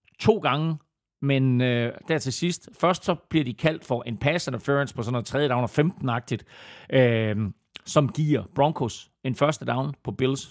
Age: 40-59